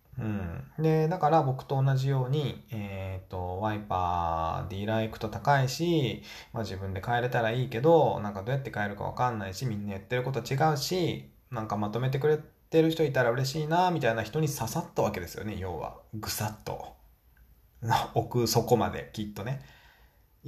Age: 20-39